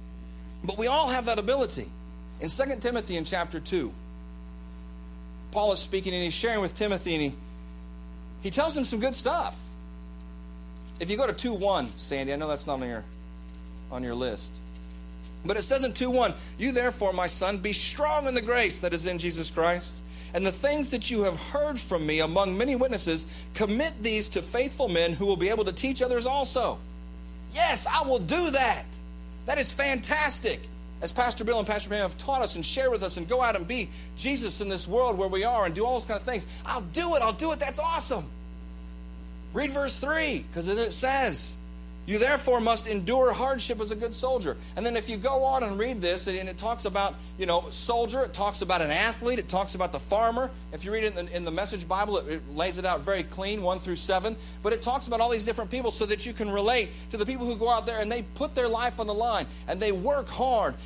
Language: English